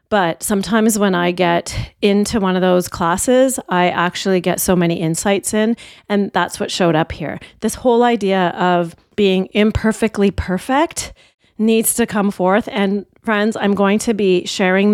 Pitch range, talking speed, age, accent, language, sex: 180-220 Hz, 165 wpm, 30-49, American, English, female